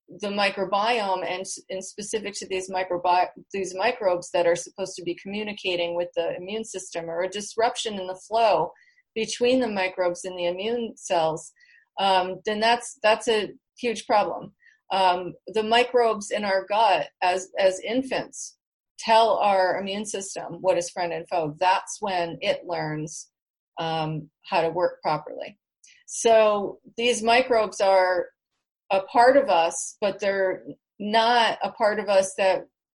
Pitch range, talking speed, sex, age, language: 180-225 Hz, 150 wpm, female, 40-59, English